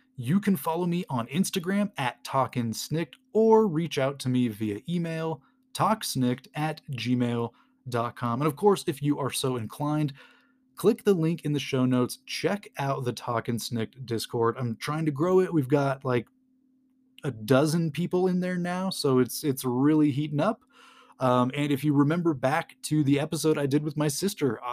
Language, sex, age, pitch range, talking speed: English, male, 20-39, 130-175 Hz, 175 wpm